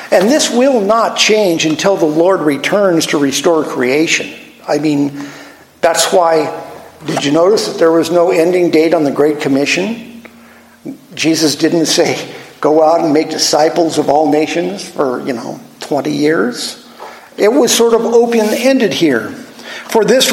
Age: 50-69